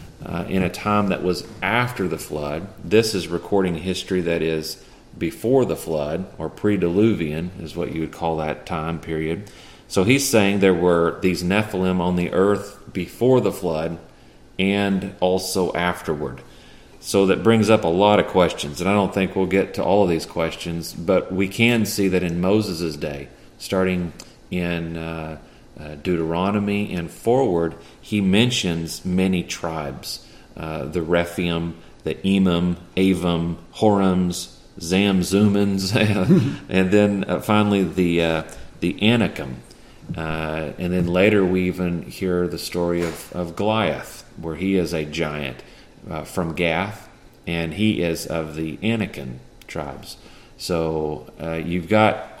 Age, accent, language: 40-59, American, English